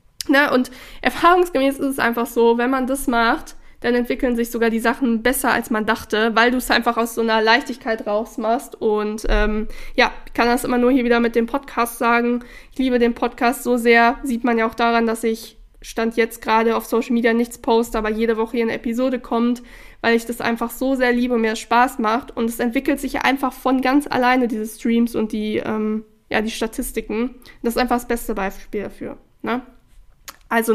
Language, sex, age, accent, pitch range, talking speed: German, female, 20-39, German, 225-250 Hz, 205 wpm